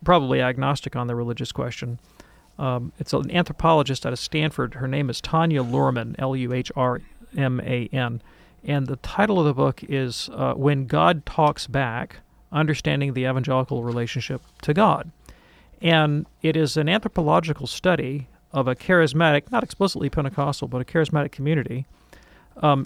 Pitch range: 130-155 Hz